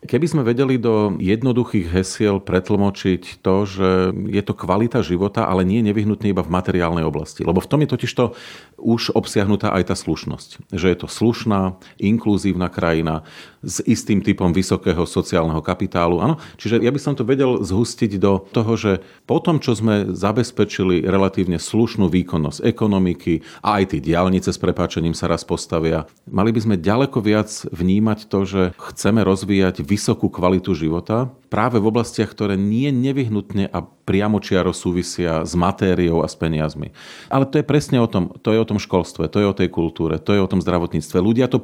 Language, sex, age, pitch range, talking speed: Slovak, male, 40-59, 90-115 Hz, 180 wpm